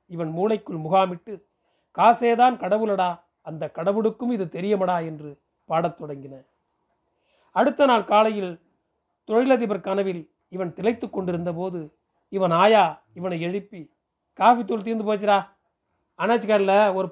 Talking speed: 110 wpm